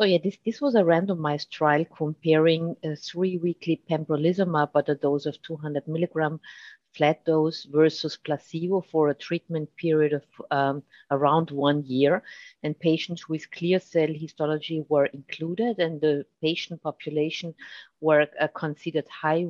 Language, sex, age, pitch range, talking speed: English, female, 50-69, 150-175 Hz, 145 wpm